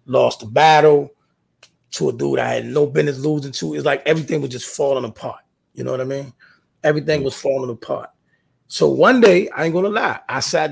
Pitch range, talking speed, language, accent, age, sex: 120-150 Hz, 205 wpm, English, American, 30-49, male